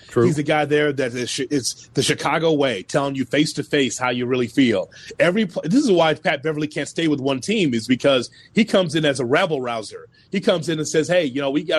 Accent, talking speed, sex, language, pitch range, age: American, 235 wpm, male, English, 145-190 Hz, 30-49